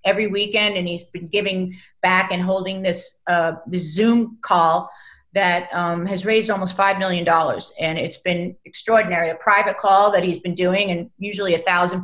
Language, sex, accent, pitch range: English, female, American, 180-210 Hz